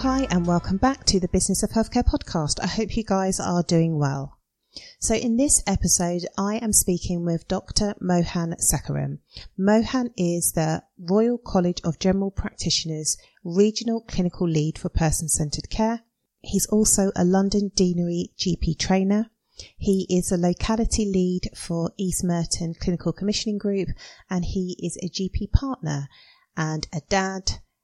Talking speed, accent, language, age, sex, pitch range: 150 wpm, British, English, 30-49, female, 165-200 Hz